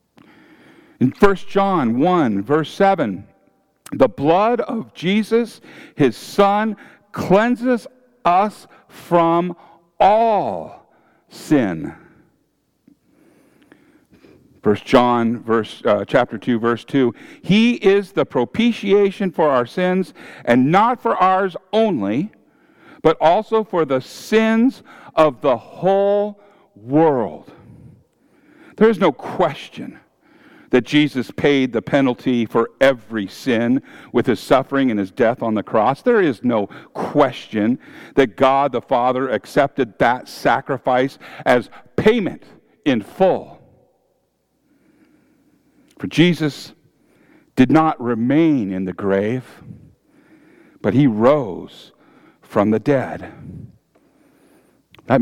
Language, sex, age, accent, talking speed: English, male, 60-79, American, 105 wpm